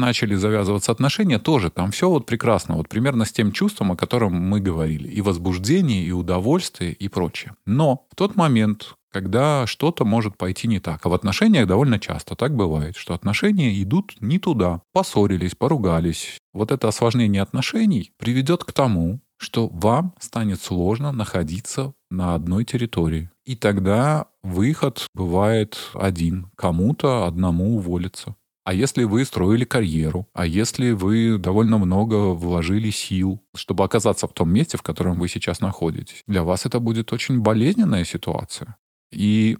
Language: Russian